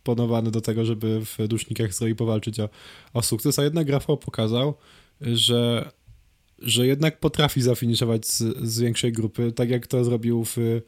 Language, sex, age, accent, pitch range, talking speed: Polish, male, 20-39, native, 115-140 Hz, 160 wpm